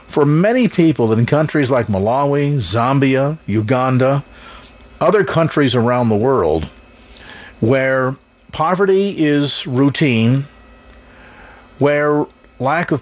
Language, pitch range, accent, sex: English, 120-150 Hz, American, male